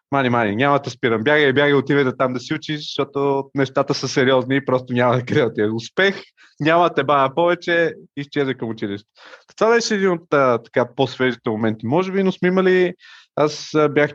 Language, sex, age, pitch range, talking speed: Bulgarian, male, 30-49, 115-140 Hz, 180 wpm